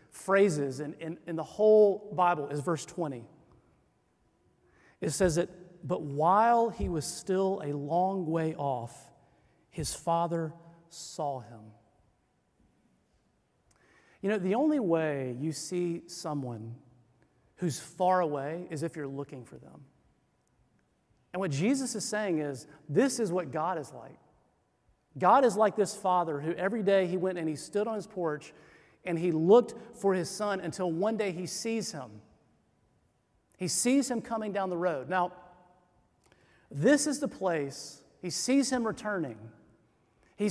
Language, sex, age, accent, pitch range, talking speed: English, male, 40-59, American, 150-205 Hz, 145 wpm